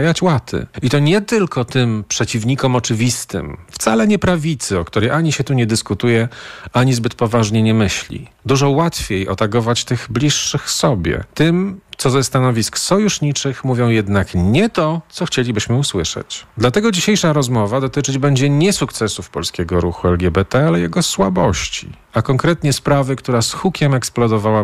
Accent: native